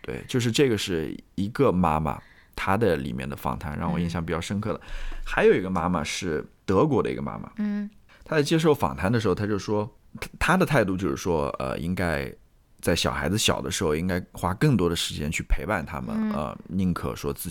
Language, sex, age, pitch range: Chinese, male, 20-39, 80-115 Hz